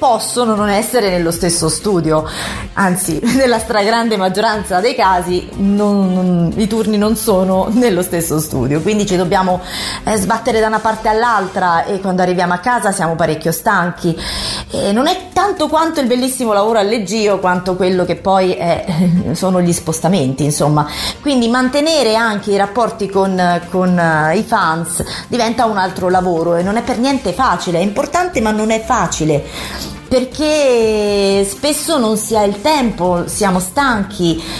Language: Italian